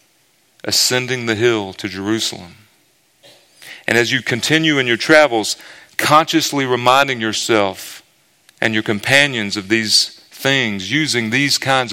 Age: 40-59